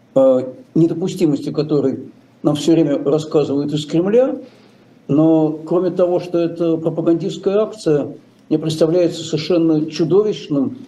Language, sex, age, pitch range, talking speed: Russian, male, 60-79, 155-190 Hz, 105 wpm